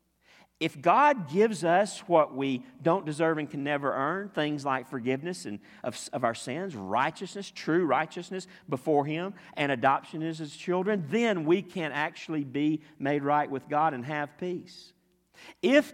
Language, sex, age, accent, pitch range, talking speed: English, male, 50-69, American, 115-180 Hz, 160 wpm